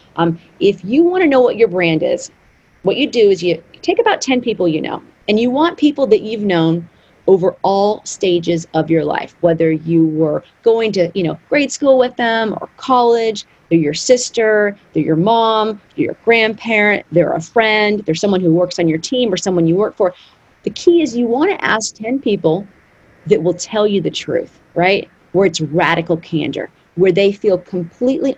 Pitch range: 170-225 Hz